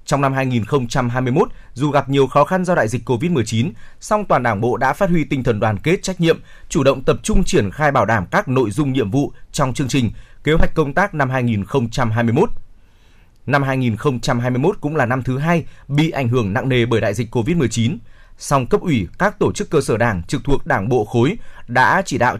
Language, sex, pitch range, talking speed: Vietnamese, male, 120-150 Hz, 215 wpm